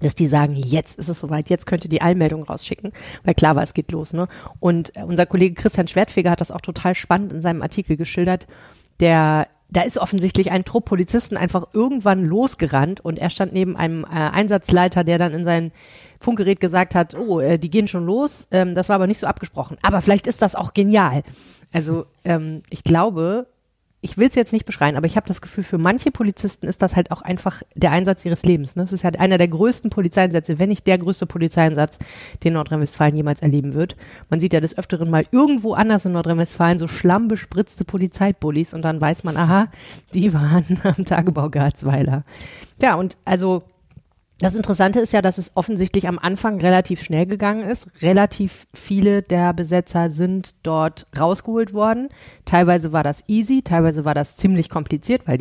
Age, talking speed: 30-49, 190 wpm